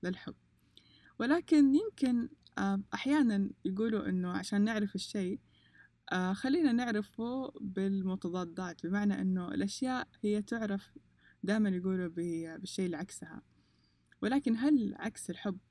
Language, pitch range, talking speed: Persian, 175-220 Hz, 95 wpm